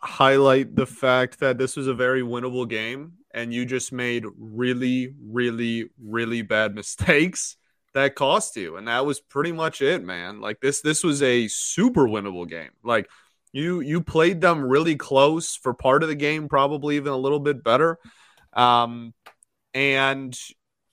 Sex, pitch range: male, 115-140 Hz